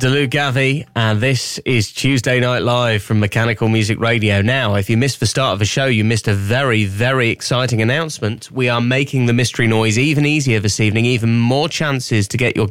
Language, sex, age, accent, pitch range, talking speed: English, male, 20-39, British, 110-130 Hz, 210 wpm